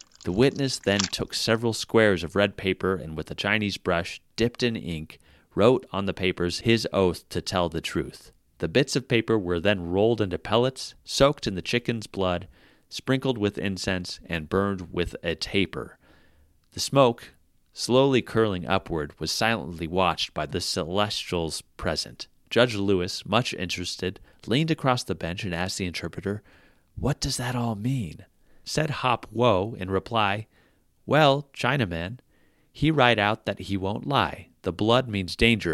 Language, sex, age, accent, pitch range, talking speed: English, male, 30-49, American, 90-120 Hz, 160 wpm